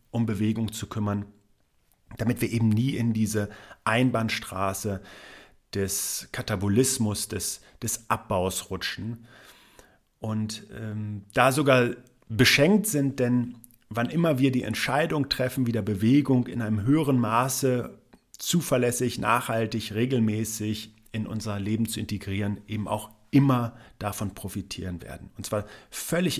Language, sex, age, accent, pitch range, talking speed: German, male, 40-59, German, 105-125 Hz, 120 wpm